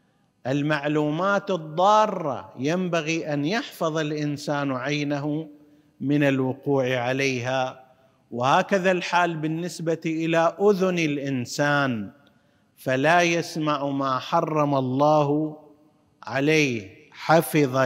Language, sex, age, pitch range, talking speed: Arabic, male, 50-69, 135-160 Hz, 75 wpm